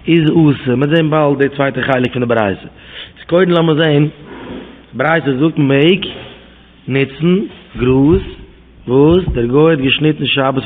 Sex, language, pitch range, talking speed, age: male, English, 140-150 Hz, 85 wpm, 20-39